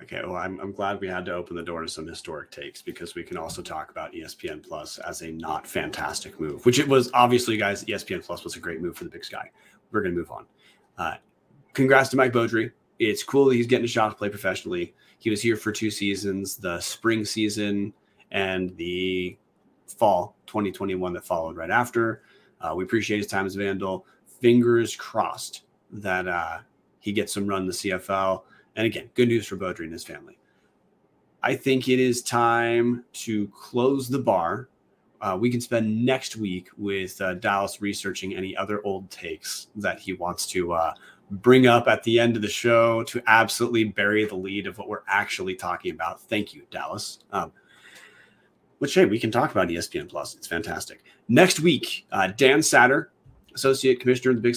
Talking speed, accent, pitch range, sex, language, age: 195 wpm, American, 95-120 Hz, male, English, 30-49